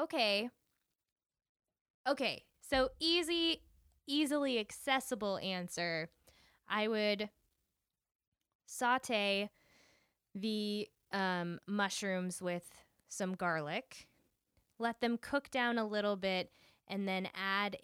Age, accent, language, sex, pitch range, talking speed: 10-29, American, English, female, 185-225 Hz, 85 wpm